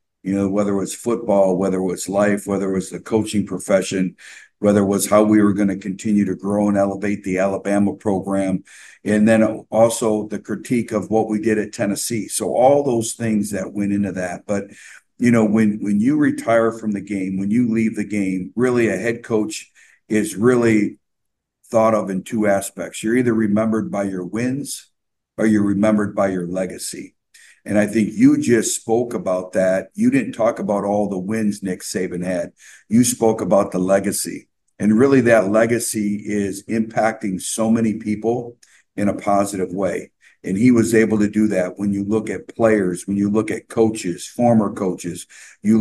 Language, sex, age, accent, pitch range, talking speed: English, male, 50-69, American, 100-110 Hz, 190 wpm